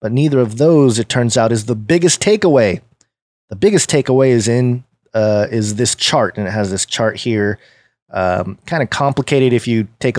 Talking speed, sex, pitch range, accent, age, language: 195 wpm, male, 115-155 Hz, American, 30-49, English